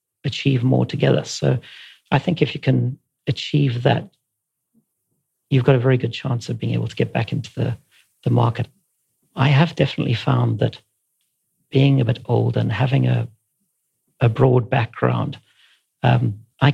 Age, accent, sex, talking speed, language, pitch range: 50-69, British, male, 160 wpm, English, 115-135 Hz